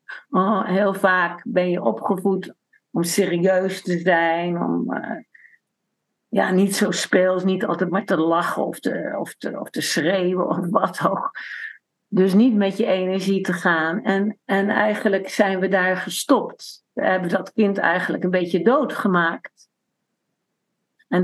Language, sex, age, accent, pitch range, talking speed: Dutch, female, 50-69, Dutch, 180-215 Hz, 155 wpm